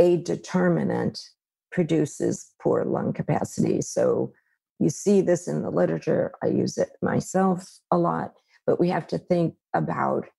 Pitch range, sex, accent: 155-185 Hz, female, American